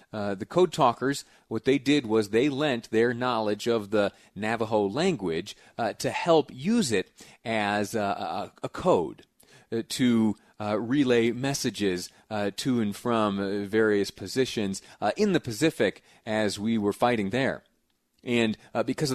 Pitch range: 95-115 Hz